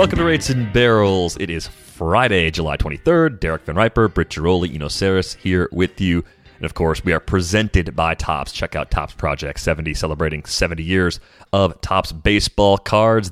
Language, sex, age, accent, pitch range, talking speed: English, male, 30-49, American, 80-105 Hz, 180 wpm